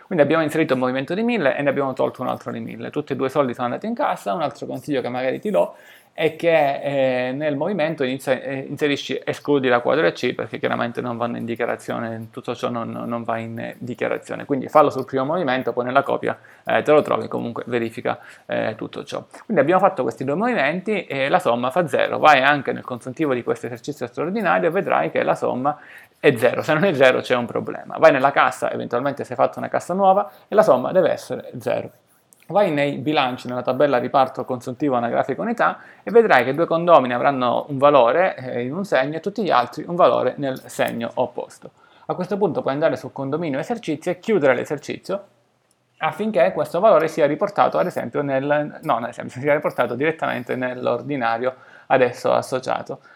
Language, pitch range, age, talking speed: Italian, 125-160 Hz, 30-49, 195 wpm